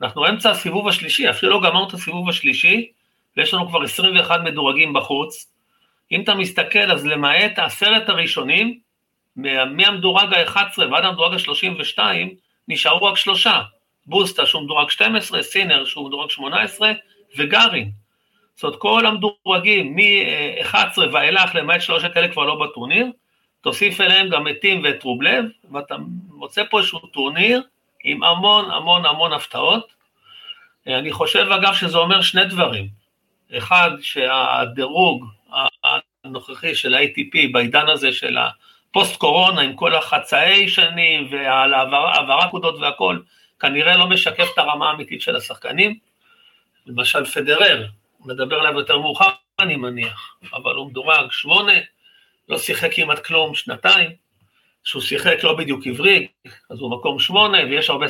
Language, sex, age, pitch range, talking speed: Hebrew, male, 50-69, 145-215 Hz, 135 wpm